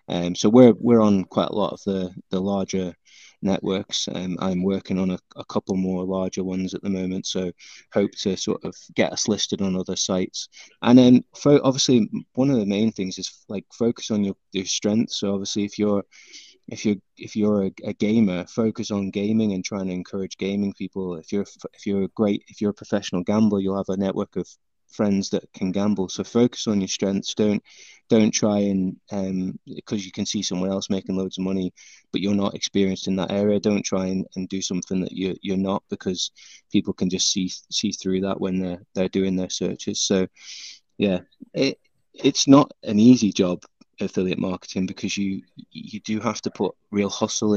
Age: 20-39